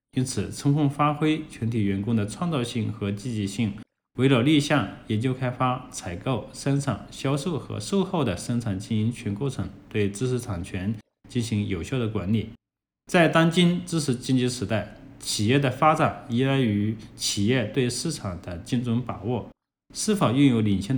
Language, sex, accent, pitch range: Chinese, male, native, 100-140 Hz